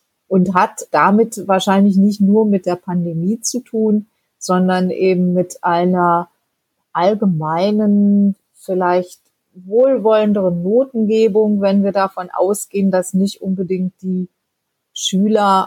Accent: German